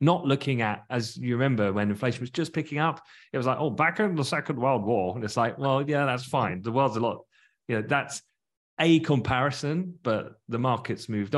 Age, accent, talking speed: 30-49, British, 220 wpm